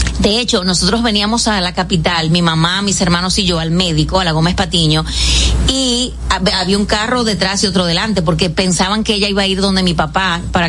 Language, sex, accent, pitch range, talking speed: Spanish, female, American, 175-220 Hz, 215 wpm